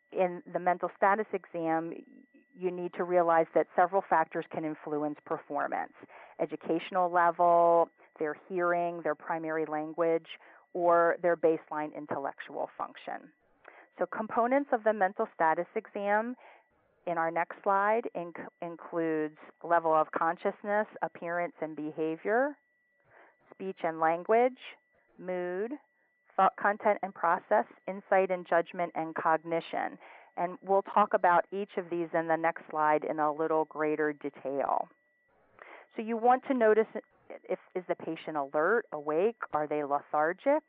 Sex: female